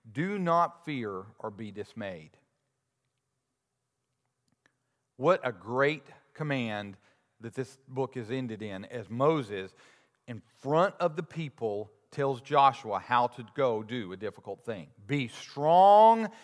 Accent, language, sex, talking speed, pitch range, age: American, English, male, 125 wpm, 120-150 Hz, 40-59